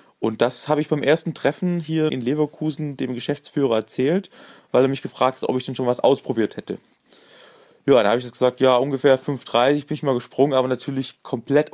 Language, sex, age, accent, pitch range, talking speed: German, male, 20-39, German, 120-140 Hz, 205 wpm